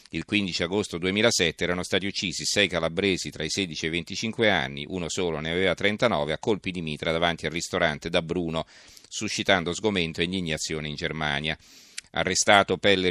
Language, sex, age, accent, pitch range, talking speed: Italian, male, 40-59, native, 85-100 Hz, 175 wpm